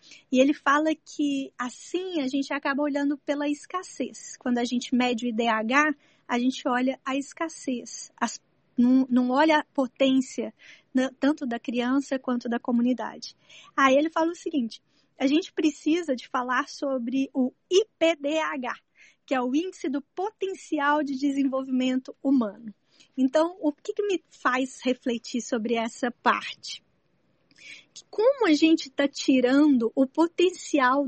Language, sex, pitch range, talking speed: Portuguese, female, 245-300 Hz, 140 wpm